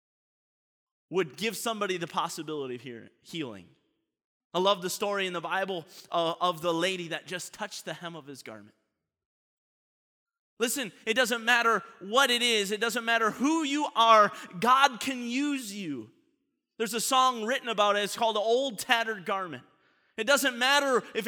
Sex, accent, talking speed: male, American, 160 wpm